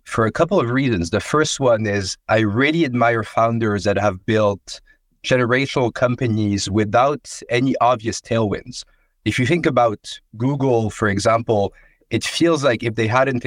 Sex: male